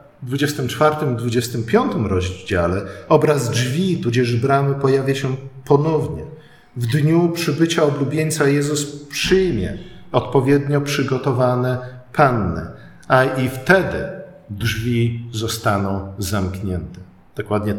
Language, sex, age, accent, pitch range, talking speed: Polish, male, 50-69, native, 110-145 Hz, 90 wpm